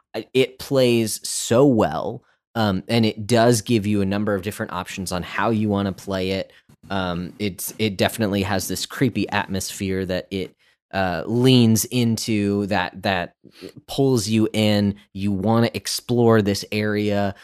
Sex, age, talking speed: male, 20-39, 160 wpm